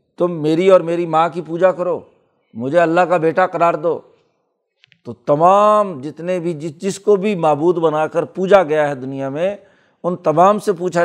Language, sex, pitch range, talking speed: Urdu, male, 145-190 Hz, 180 wpm